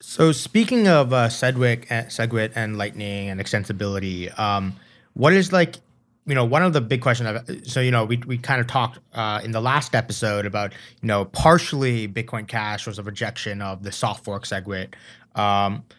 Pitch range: 105-140 Hz